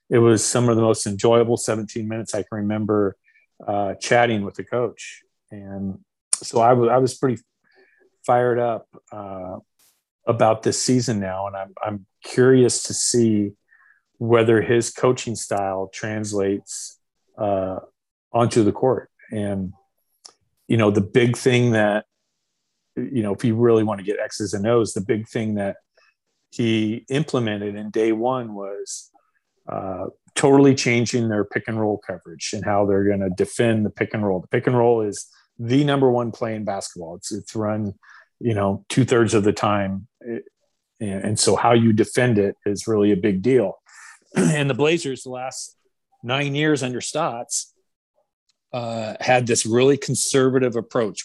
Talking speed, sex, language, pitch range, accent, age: 165 wpm, male, English, 105-125 Hz, American, 40-59